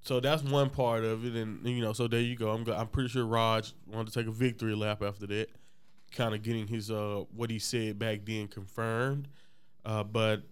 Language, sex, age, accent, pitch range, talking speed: English, male, 20-39, American, 110-125 Hz, 220 wpm